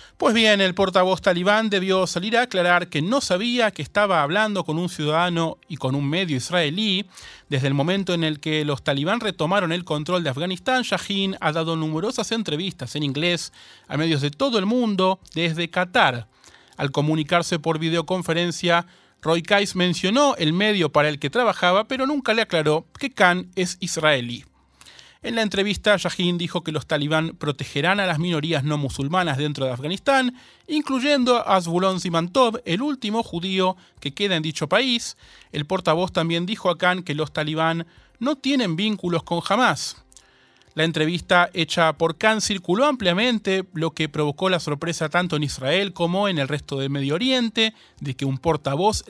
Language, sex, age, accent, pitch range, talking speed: Spanish, male, 30-49, Argentinian, 155-205 Hz, 170 wpm